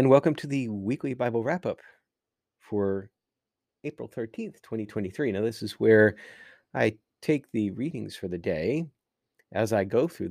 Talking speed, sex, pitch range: 155 wpm, male, 100-130 Hz